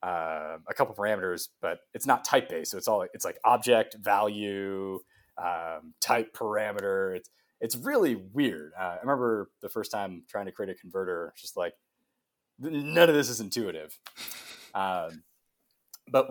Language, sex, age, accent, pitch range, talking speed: English, male, 30-49, American, 100-130 Hz, 160 wpm